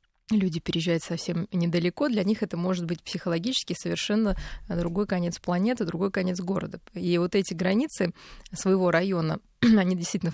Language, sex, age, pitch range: Russian, female, 20-39, 175-210 Hz